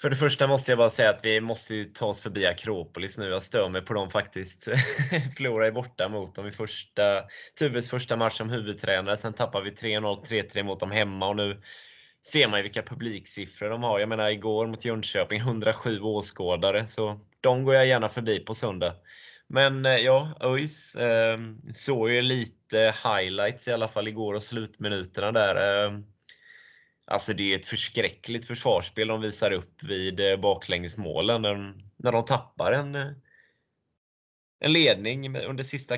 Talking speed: 160 wpm